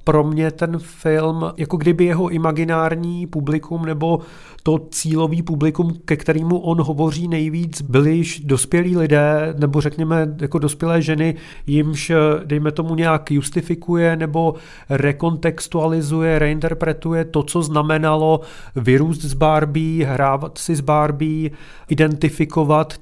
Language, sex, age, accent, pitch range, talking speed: Czech, male, 40-59, native, 150-165 Hz, 115 wpm